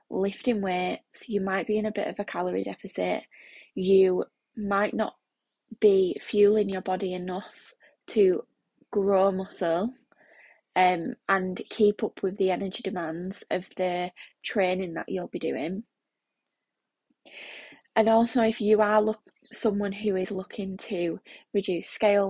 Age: 20-39